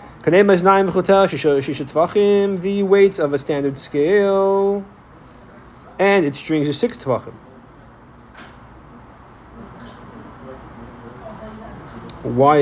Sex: male